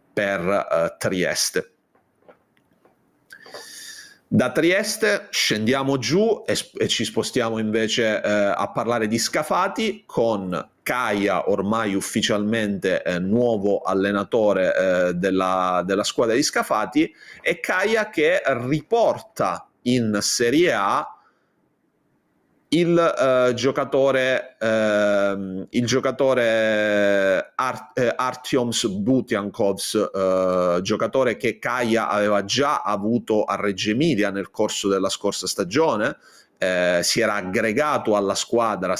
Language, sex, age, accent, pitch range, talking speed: Italian, male, 30-49, native, 100-135 Hz, 105 wpm